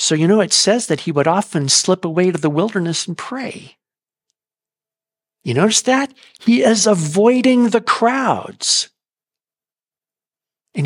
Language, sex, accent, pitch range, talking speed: English, male, American, 160-220 Hz, 140 wpm